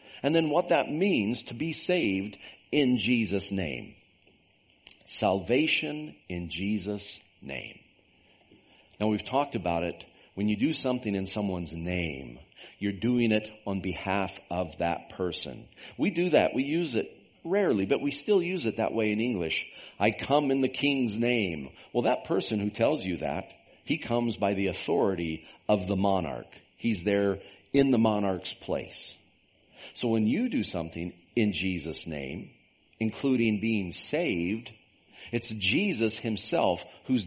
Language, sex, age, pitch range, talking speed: English, male, 50-69, 90-115 Hz, 150 wpm